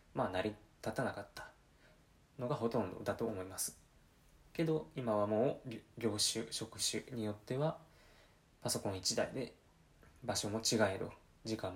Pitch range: 105-140 Hz